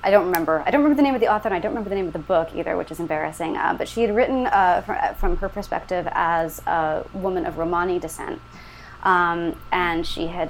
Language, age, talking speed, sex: English, 20-39, 250 wpm, female